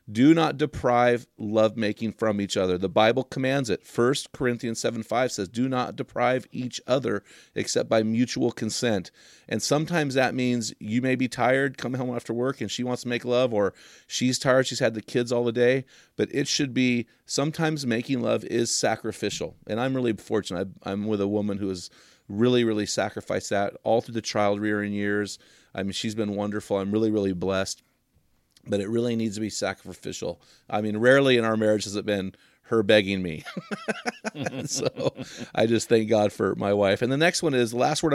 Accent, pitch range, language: American, 105-130 Hz, English